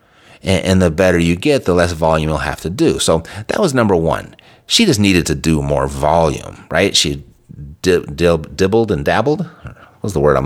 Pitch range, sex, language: 85-125 Hz, male, English